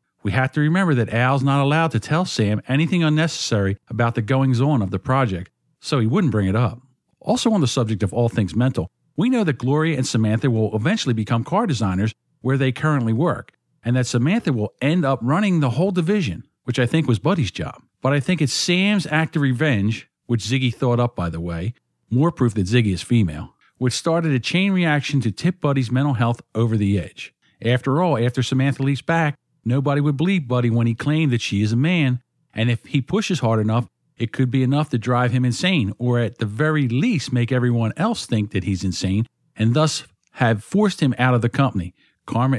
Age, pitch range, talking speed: 50-69, 110-145 Hz, 215 wpm